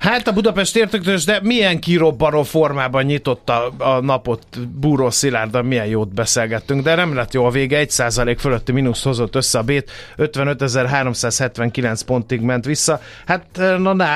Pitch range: 125-150 Hz